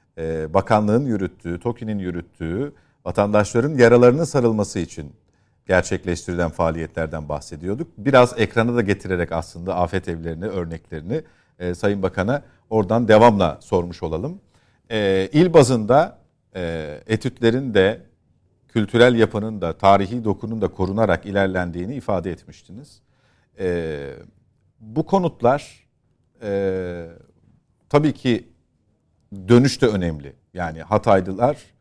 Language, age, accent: Turkish, 50-69, native